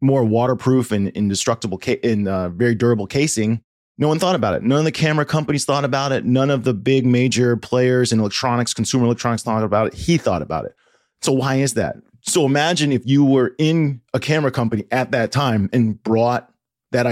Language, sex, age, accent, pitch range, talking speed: English, male, 30-49, American, 115-150 Hz, 205 wpm